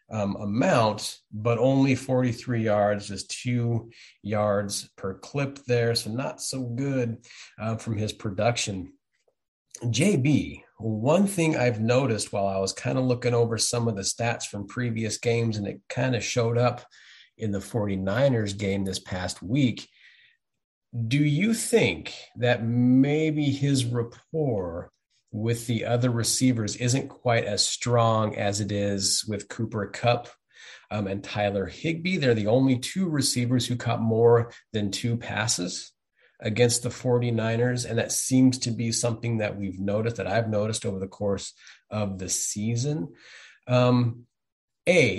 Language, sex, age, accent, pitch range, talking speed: English, male, 40-59, American, 105-125 Hz, 145 wpm